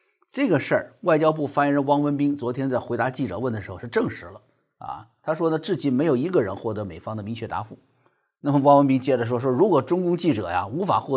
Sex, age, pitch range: male, 50-69, 120-160 Hz